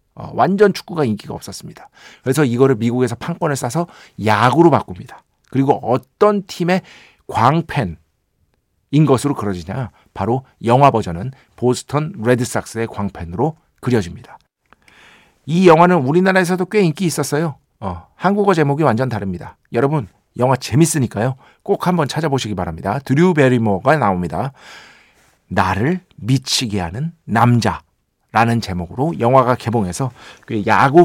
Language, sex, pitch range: Korean, male, 105-155 Hz